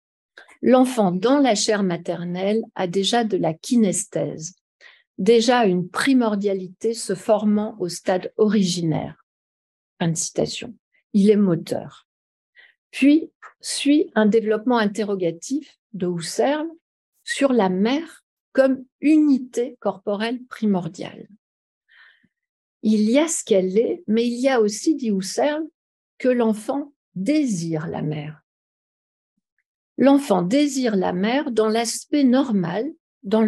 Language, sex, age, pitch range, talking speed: French, female, 50-69, 190-265 Hz, 115 wpm